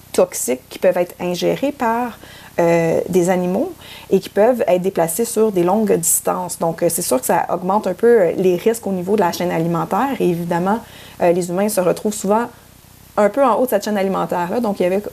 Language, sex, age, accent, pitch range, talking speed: French, female, 30-49, Canadian, 180-220 Hz, 220 wpm